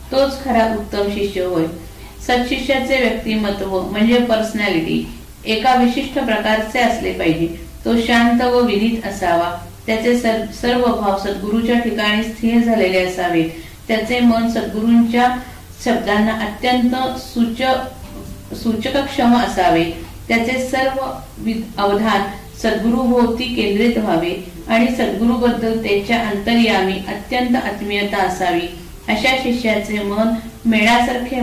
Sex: female